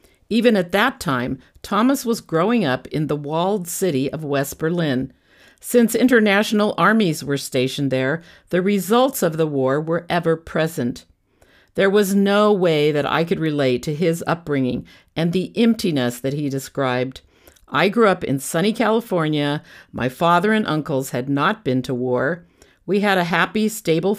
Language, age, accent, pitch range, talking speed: English, 50-69, American, 140-200 Hz, 165 wpm